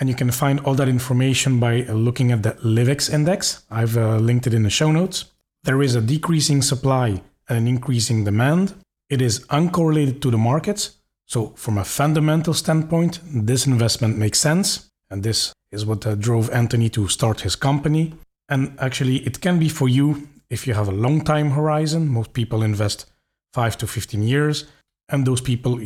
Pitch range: 115-140 Hz